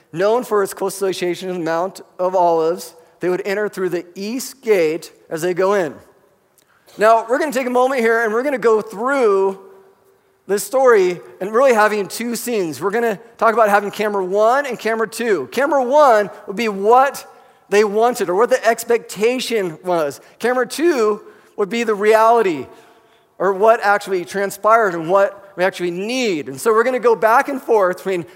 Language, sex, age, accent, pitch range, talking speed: English, male, 40-59, American, 200-250 Hz, 190 wpm